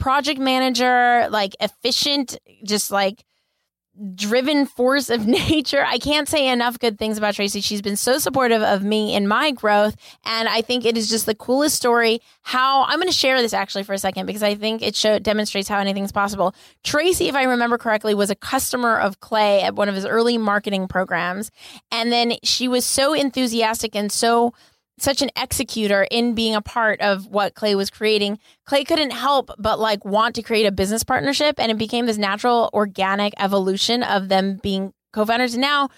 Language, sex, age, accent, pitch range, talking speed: English, female, 20-39, American, 210-255 Hz, 190 wpm